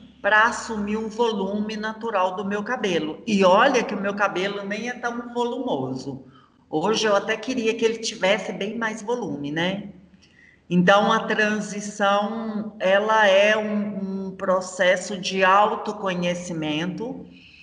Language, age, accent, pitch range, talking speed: Portuguese, 40-59, Brazilian, 175-215 Hz, 135 wpm